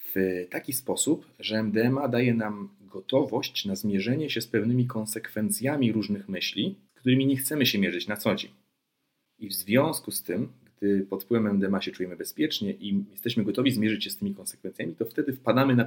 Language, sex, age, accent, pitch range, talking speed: Polish, male, 40-59, native, 95-125 Hz, 185 wpm